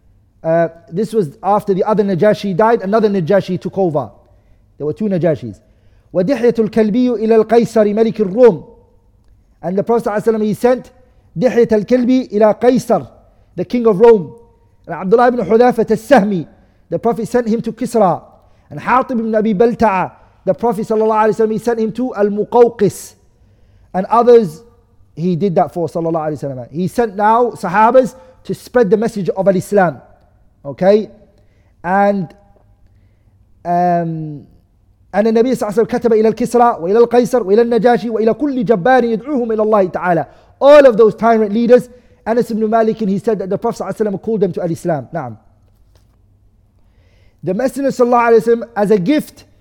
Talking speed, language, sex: 145 wpm, English, male